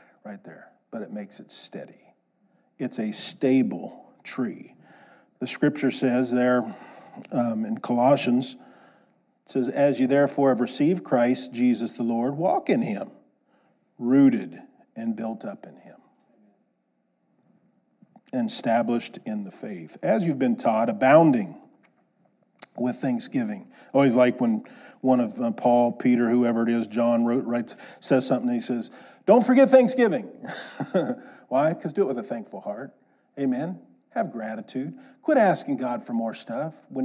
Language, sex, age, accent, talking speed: English, male, 40-59, American, 145 wpm